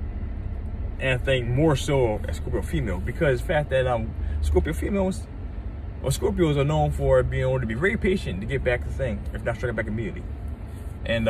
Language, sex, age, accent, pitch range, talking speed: English, male, 20-39, American, 80-105 Hz, 195 wpm